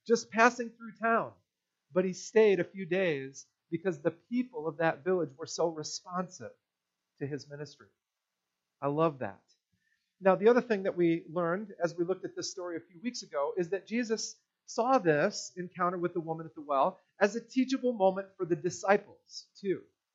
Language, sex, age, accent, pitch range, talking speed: English, male, 40-59, American, 160-210 Hz, 185 wpm